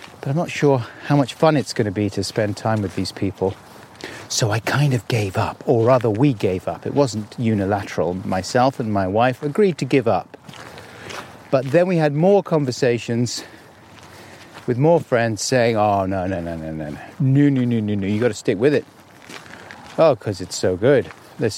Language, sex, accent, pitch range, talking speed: English, male, British, 100-145 Hz, 200 wpm